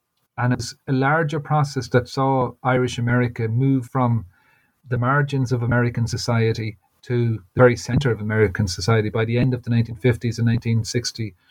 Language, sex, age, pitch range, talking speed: English, male, 40-59, 120-135 Hz, 160 wpm